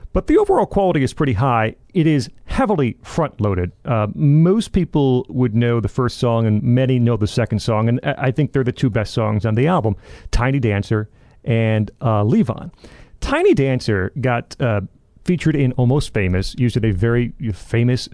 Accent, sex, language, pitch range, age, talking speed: American, male, English, 110-155 Hz, 40-59, 180 wpm